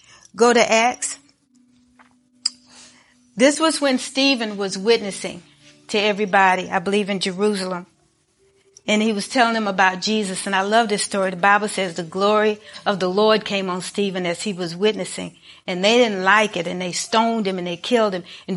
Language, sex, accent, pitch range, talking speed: English, female, American, 185-225 Hz, 180 wpm